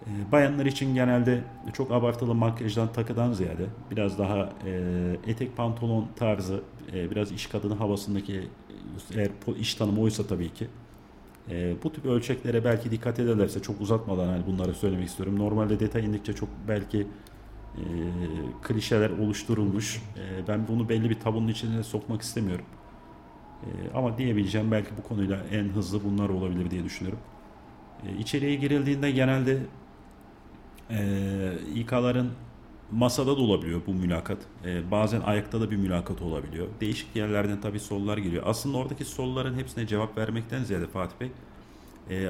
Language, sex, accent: Turkish, male, native